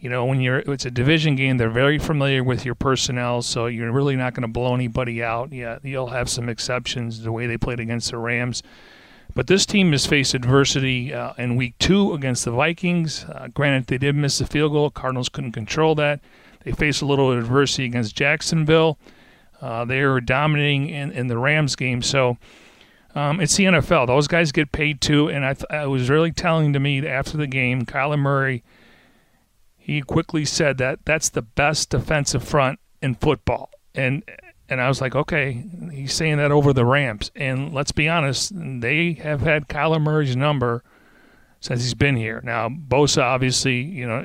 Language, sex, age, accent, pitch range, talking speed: English, male, 40-59, American, 125-150 Hz, 195 wpm